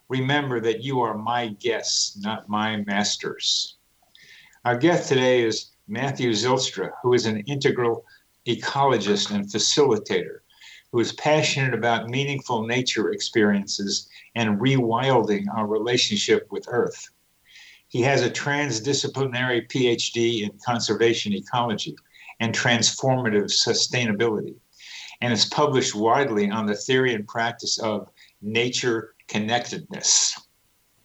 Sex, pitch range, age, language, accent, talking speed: male, 110-135 Hz, 60-79, English, American, 110 wpm